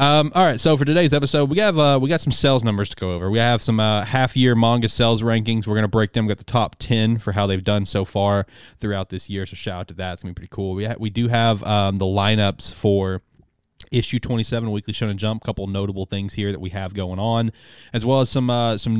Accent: American